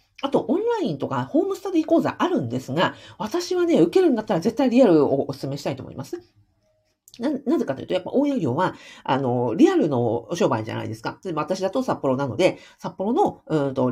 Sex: female